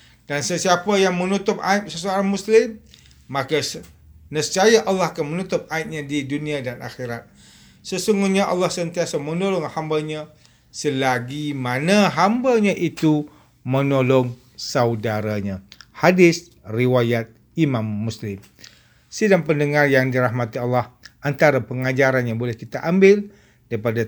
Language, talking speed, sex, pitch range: English, 110 wpm, male, 125-170 Hz